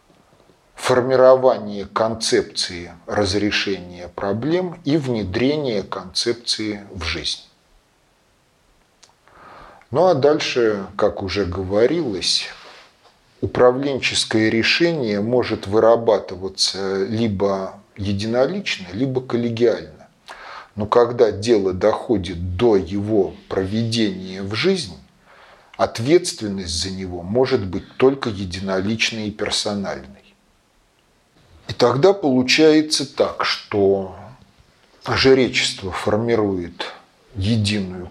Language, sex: Russian, male